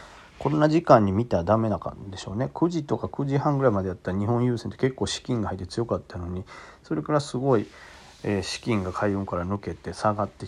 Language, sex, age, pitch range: Japanese, male, 40-59, 95-130 Hz